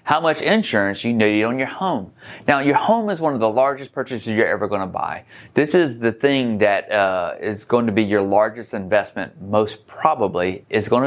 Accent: American